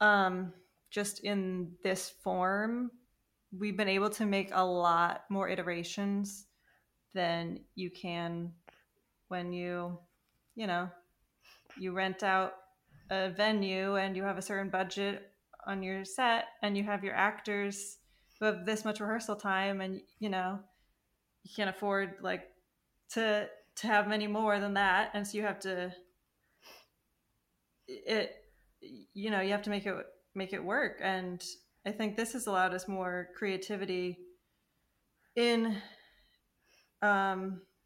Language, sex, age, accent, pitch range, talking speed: English, female, 20-39, American, 185-210 Hz, 140 wpm